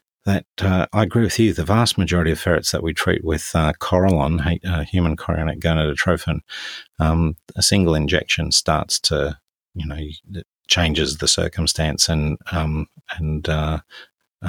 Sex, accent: male, Australian